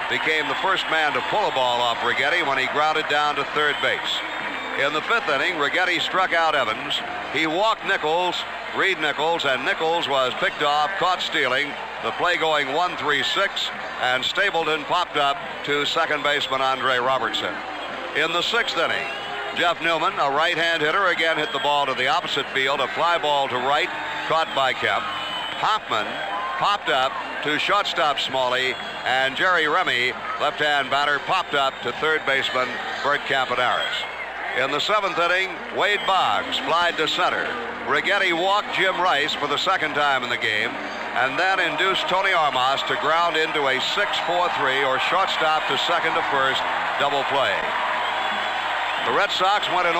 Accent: American